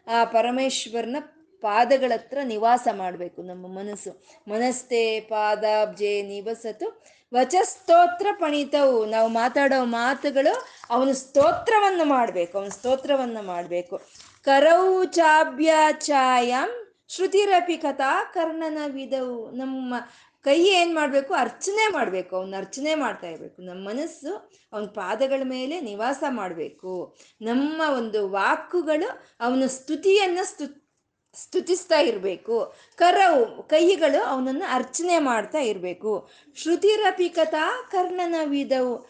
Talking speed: 85 wpm